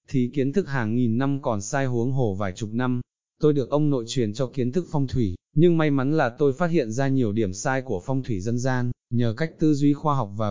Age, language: 20-39, Vietnamese